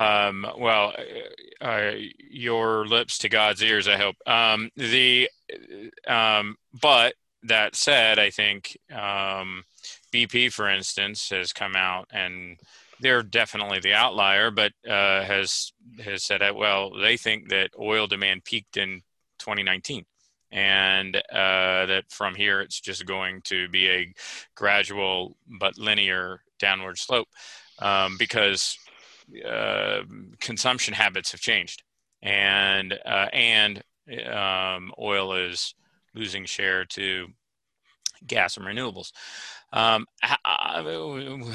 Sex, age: male, 30-49